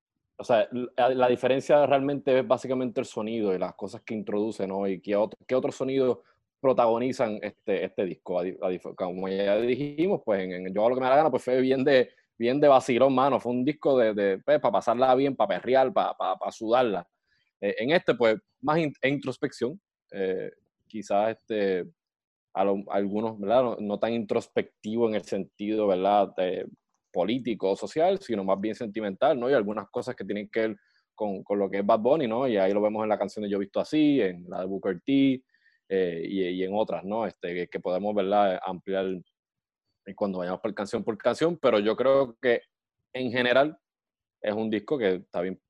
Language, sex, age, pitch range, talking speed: English, male, 20-39, 100-130 Hz, 205 wpm